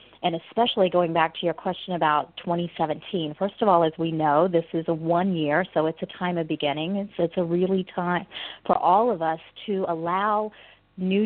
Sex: female